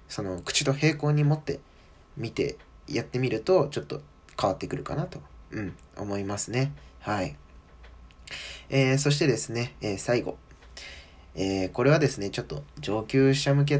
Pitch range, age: 100-140 Hz, 20-39